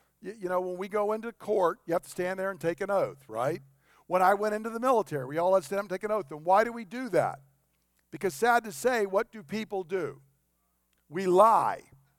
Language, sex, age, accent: English, male, 50-69, American